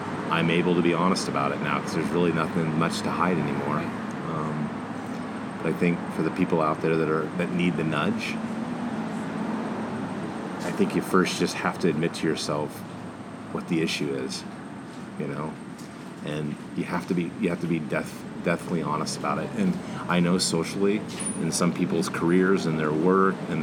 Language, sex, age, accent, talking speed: English, male, 30-49, American, 185 wpm